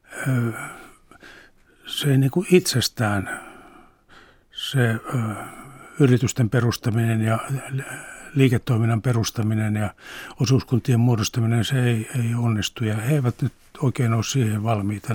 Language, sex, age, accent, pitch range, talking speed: Finnish, male, 60-79, native, 110-130 Hz, 105 wpm